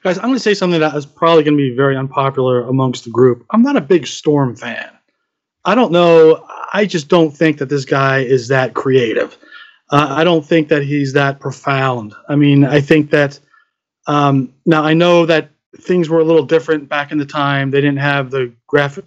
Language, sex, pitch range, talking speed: English, male, 135-170 Hz, 215 wpm